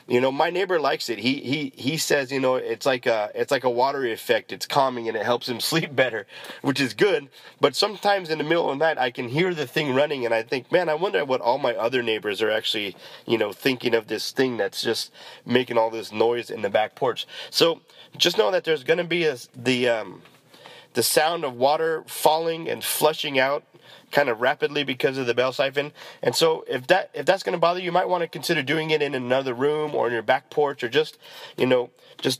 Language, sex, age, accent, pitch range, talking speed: English, male, 30-49, American, 125-165 Hz, 245 wpm